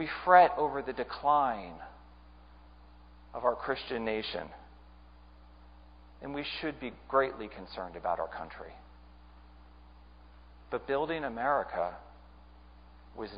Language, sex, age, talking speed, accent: English, male, 40-59, 100 wpm, American